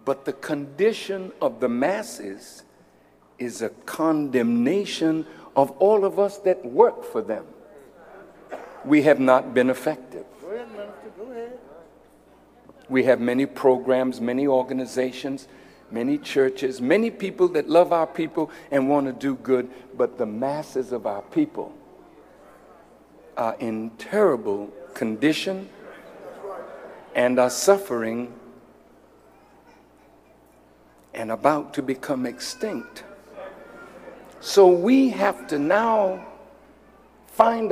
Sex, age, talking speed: male, 60-79, 105 wpm